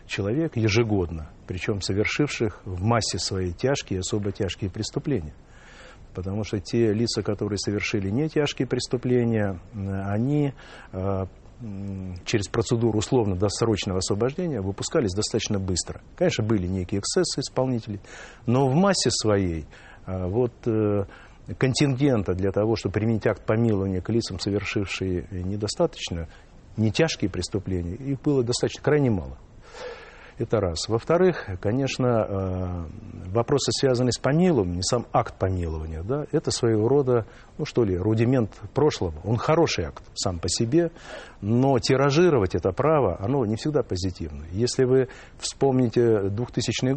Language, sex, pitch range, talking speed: Russian, male, 95-125 Hz, 120 wpm